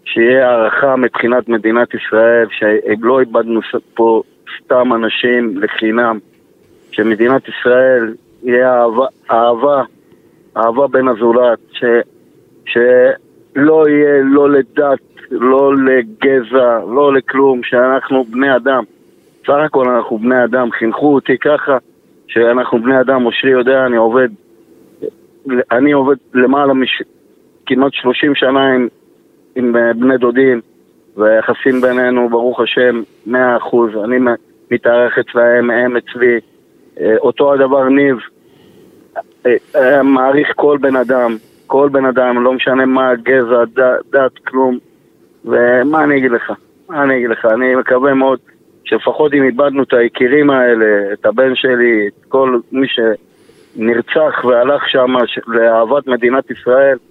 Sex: male